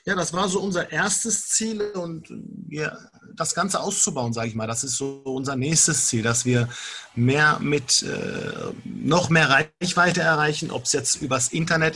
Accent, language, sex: German, German, male